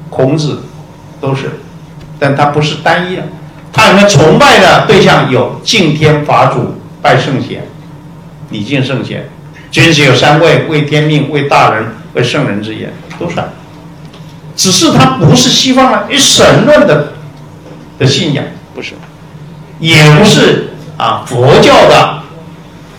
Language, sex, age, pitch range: Chinese, male, 50-69, 150-160 Hz